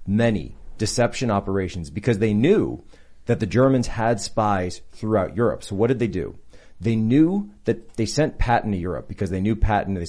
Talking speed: 185 wpm